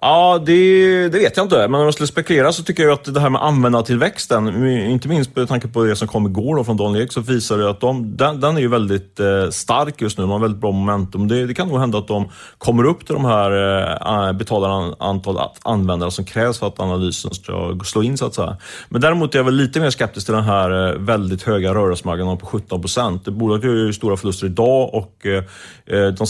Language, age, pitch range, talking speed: Swedish, 30-49, 95-120 Hz, 225 wpm